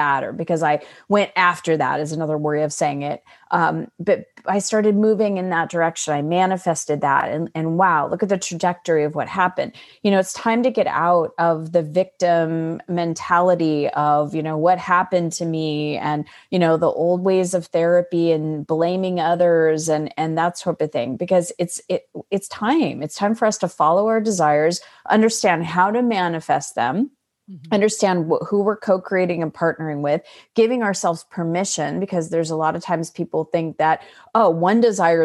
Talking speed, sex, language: 185 wpm, female, English